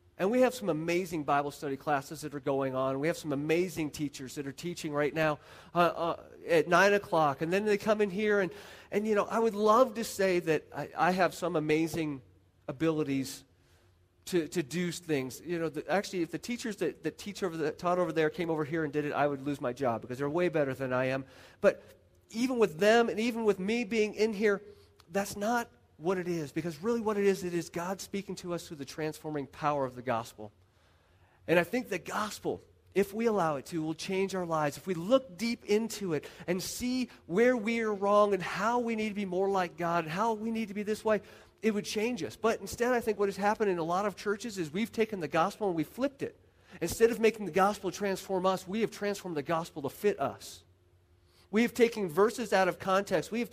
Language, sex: English, male